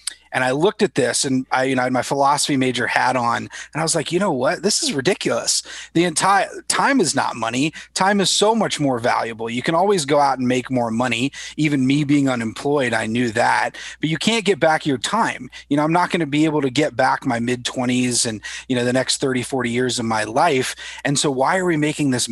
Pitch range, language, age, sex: 120-155 Hz, English, 30-49, male